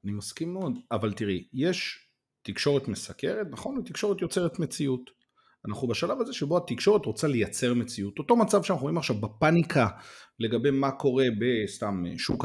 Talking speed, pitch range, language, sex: 155 wpm, 110-170 Hz, Hebrew, male